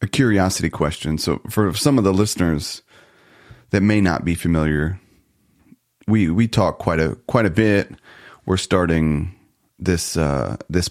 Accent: American